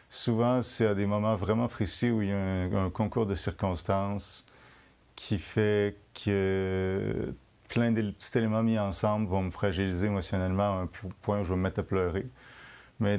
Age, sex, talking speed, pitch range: 30-49, male, 180 wpm, 95-110 Hz